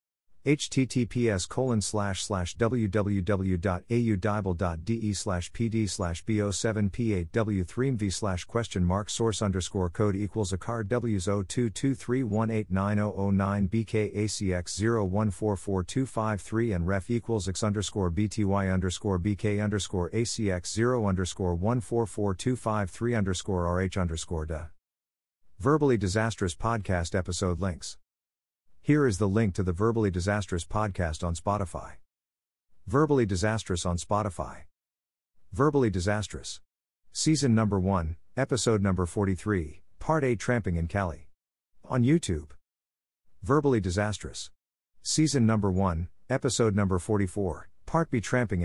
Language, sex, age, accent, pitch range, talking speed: English, male, 50-69, American, 90-115 Hz, 140 wpm